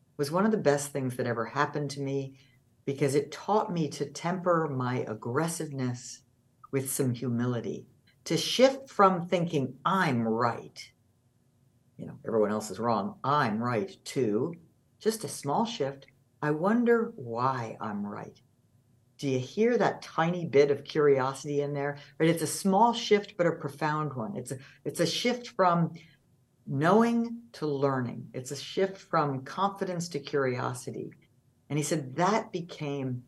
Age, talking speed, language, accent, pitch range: 60-79, 155 wpm, English, American, 125-155 Hz